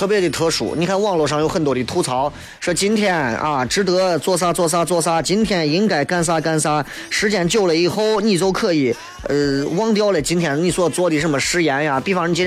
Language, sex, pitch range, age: Chinese, male, 140-195 Hz, 20-39